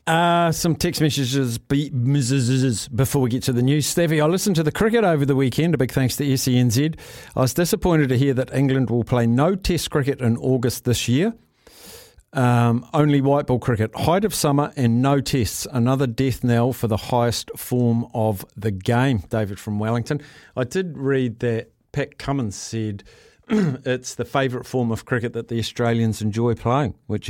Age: 50-69